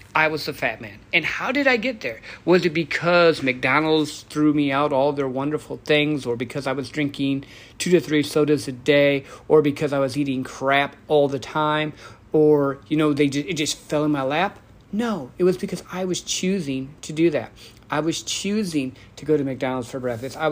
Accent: American